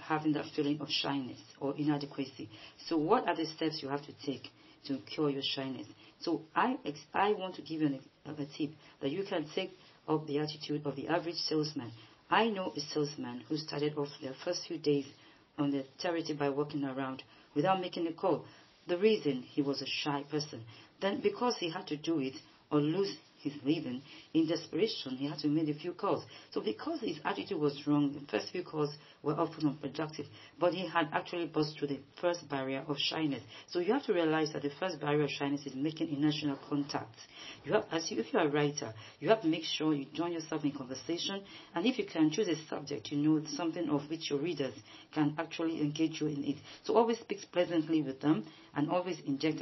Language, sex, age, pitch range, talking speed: Greek, female, 40-59, 145-165 Hz, 215 wpm